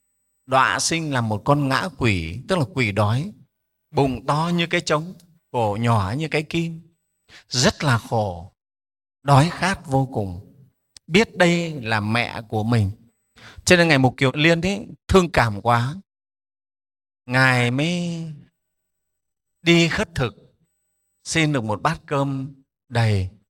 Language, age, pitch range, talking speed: Vietnamese, 30-49, 120-175 Hz, 140 wpm